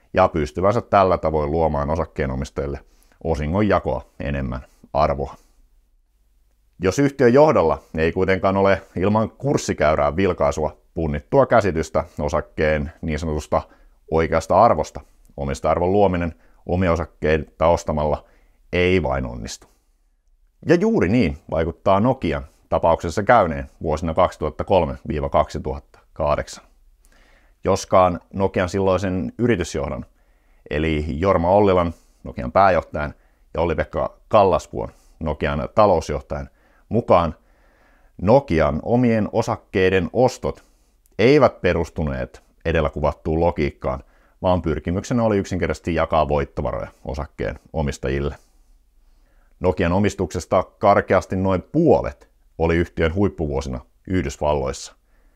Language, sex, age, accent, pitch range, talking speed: Finnish, male, 50-69, native, 75-95 Hz, 90 wpm